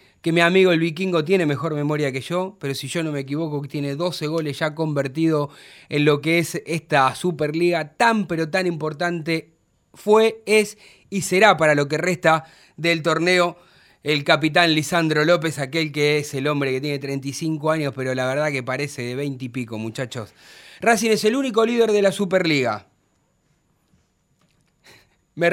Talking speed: 175 wpm